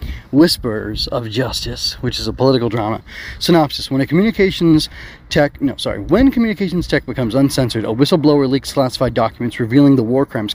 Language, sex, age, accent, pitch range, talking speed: English, male, 30-49, American, 115-145 Hz, 165 wpm